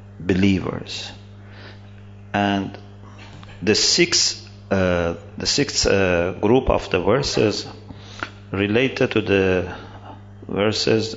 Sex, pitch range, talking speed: male, 95-105 Hz, 80 wpm